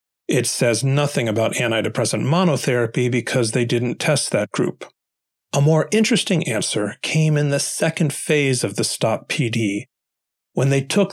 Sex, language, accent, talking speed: male, English, American, 145 wpm